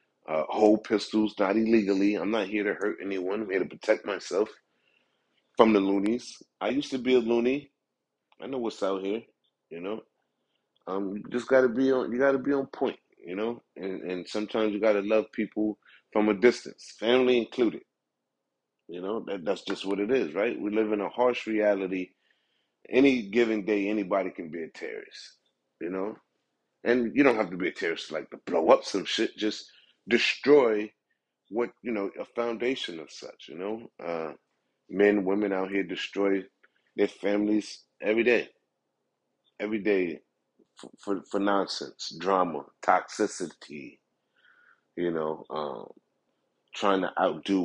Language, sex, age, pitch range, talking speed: English, male, 30-49, 95-120 Hz, 165 wpm